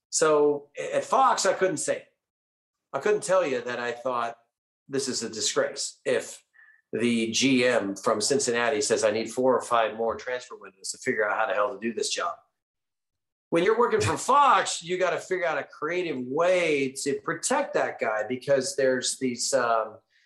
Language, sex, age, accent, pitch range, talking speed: English, male, 40-59, American, 125-165 Hz, 180 wpm